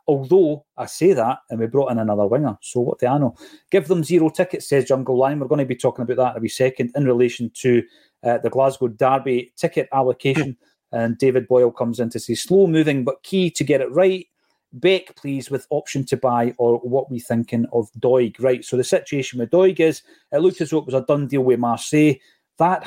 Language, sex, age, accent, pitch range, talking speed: English, male, 30-49, British, 120-150 Hz, 235 wpm